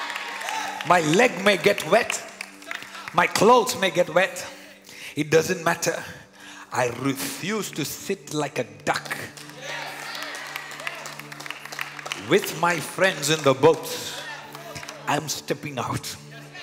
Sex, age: male, 50-69